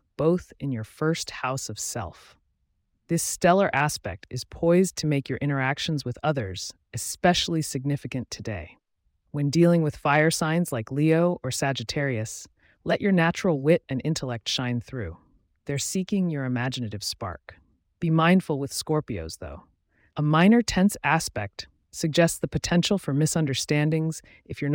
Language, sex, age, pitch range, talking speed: English, female, 30-49, 115-160 Hz, 145 wpm